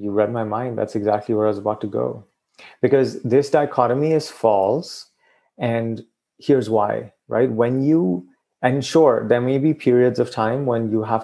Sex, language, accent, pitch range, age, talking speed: male, English, Indian, 110-130 Hz, 30-49, 180 wpm